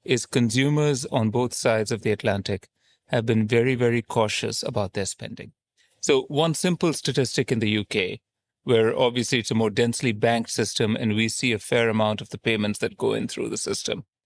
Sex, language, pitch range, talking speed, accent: male, English, 110-135 Hz, 195 wpm, Indian